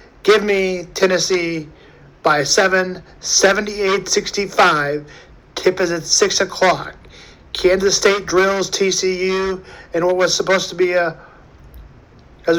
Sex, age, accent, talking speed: male, 50-69, American, 110 wpm